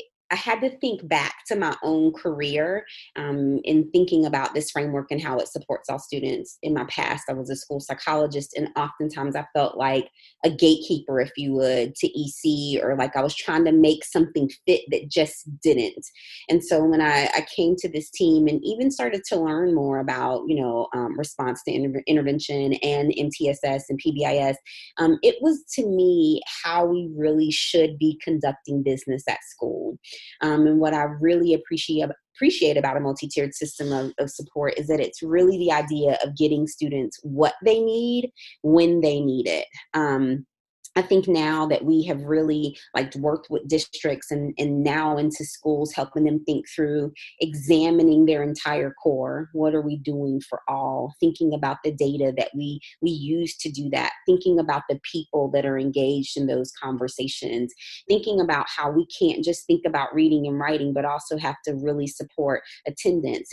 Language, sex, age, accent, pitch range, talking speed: English, female, 20-39, American, 140-165 Hz, 185 wpm